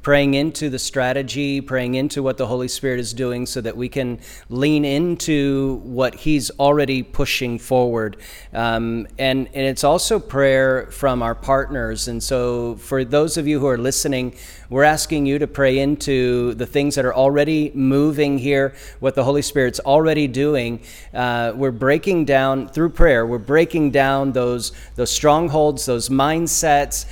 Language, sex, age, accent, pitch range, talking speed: English, male, 40-59, American, 125-145 Hz, 165 wpm